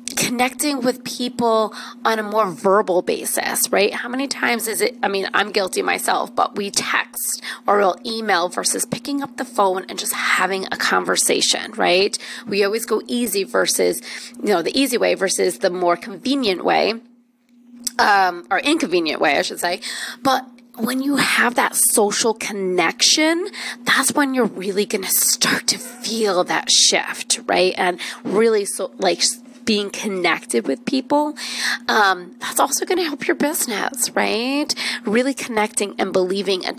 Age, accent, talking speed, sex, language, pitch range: 30-49, American, 160 wpm, female, English, 200-255 Hz